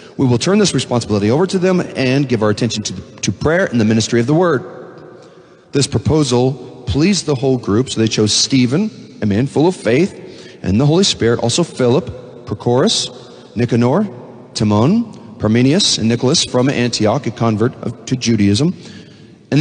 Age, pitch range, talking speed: 40-59, 125-180 Hz, 170 wpm